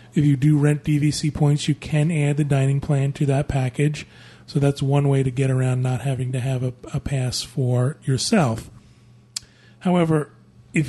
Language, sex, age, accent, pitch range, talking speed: English, male, 30-49, American, 130-150 Hz, 180 wpm